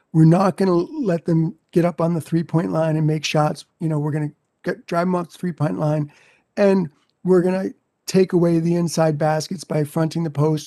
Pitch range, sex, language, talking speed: 160-195 Hz, male, English, 210 wpm